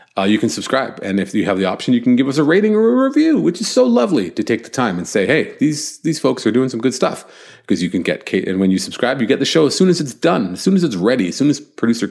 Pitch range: 95-145 Hz